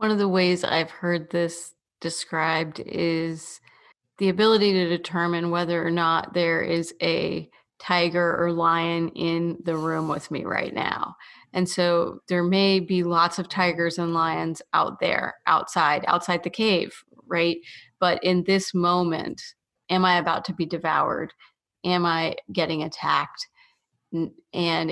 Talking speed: 145 wpm